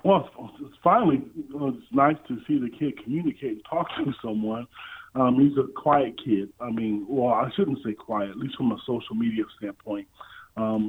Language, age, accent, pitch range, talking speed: English, 20-39, American, 115-135 Hz, 180 wpm